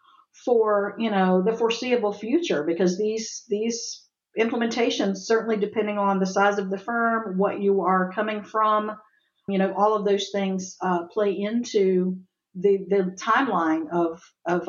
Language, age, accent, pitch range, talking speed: English, 50-69, American, 195-240 Hz, 150 wpm